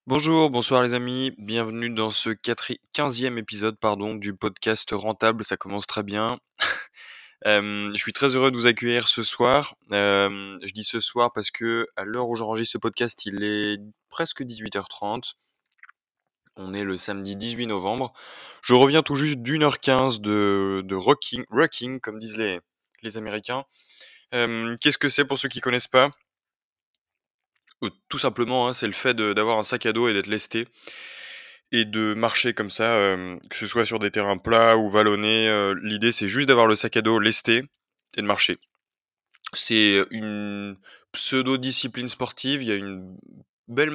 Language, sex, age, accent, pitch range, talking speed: French, male, 20-39, French, 105-125 Hz, 170 wpm